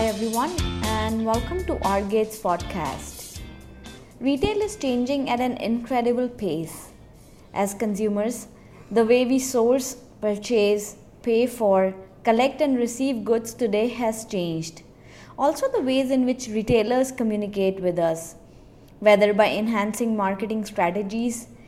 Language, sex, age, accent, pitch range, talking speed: English, female, 20-39, Indian, 210-260 Hz, 125 wpm